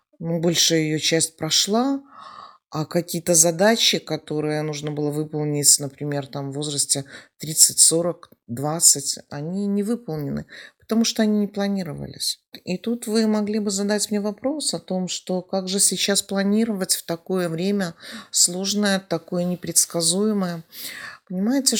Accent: native